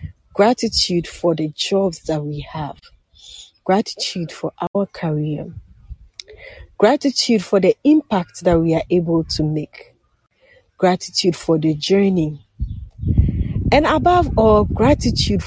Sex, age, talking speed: female, 40-59, 115 wpm